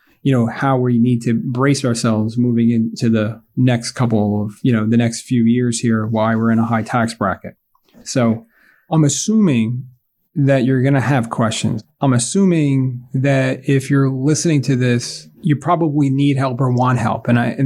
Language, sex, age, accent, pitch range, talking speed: English, male, 30-49, American, 120-140 Hz, 185 wpm